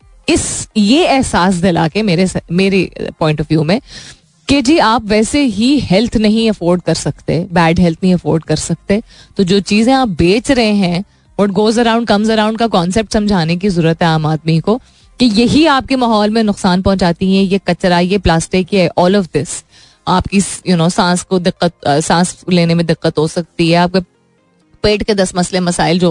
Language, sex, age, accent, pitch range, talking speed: Hindi, female, 30-49, native, 165-215 Hz, 200 wpm